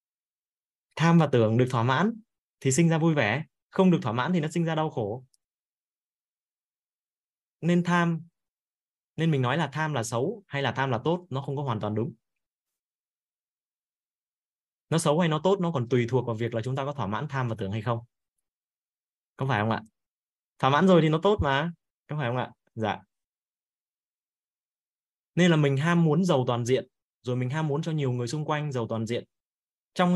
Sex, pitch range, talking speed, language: male, 120-155 Hz, 200 wpm, Vietnamese